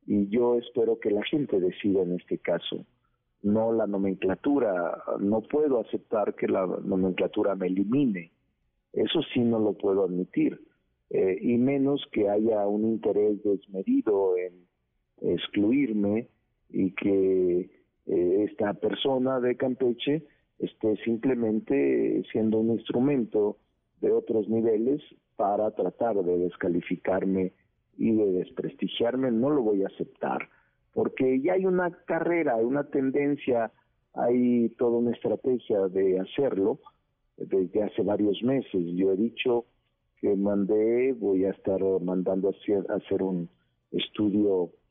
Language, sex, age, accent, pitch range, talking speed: Spanish, male, 50-69, Mexican, 100-130 Hz, 125 wpm